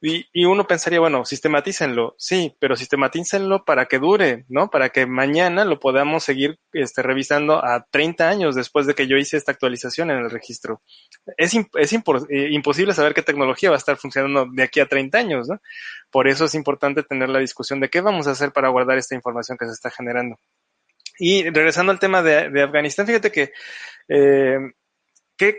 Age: 20-39